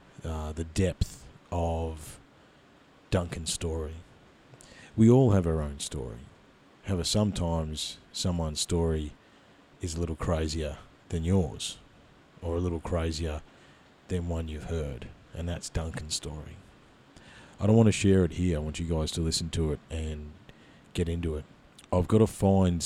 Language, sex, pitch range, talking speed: English, male, 80-95 Hz, 150 wpm